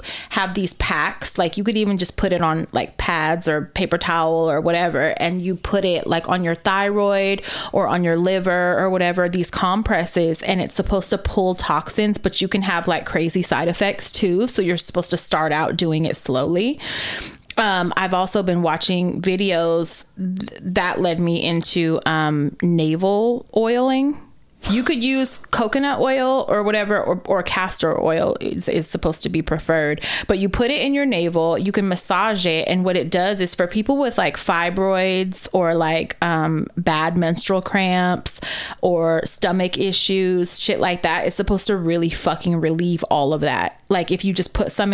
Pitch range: 170-200 Hz